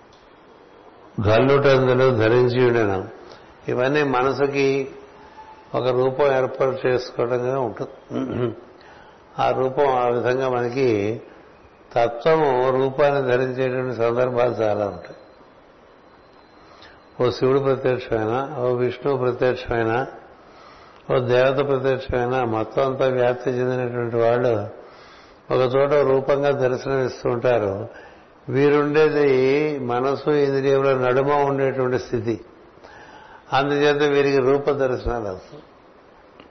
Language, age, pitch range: Telugu, 60-79, 125-140 Hz